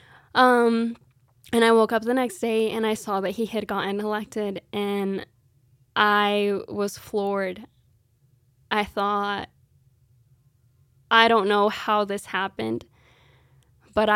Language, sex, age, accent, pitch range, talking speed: English, female, 10-29, American, 195-225 Hz, 125 wpm